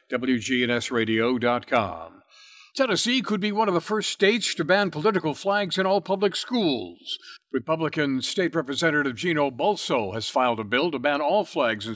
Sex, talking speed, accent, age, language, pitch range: male, 155 wpm, American, 60-79, English, 125-185 Hz